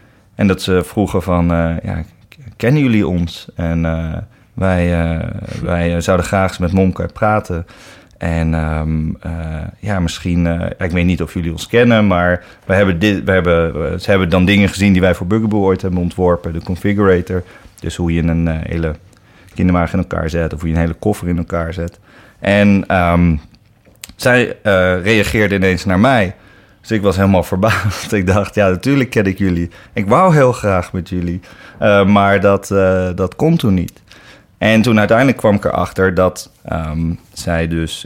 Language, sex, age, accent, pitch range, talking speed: Dutch, male, 30-49, Dutch, 85-100 Hz, 180 wpm